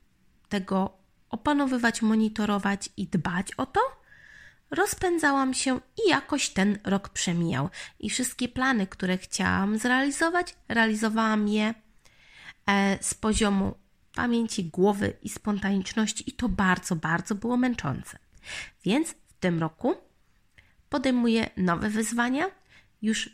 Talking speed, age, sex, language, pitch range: 110 wpm, 20-39, female, Polish, 190-255 Hz